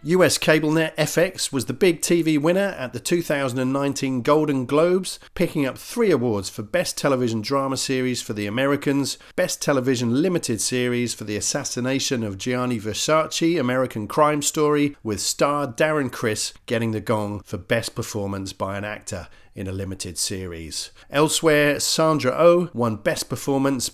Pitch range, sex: 110-145 Hz, male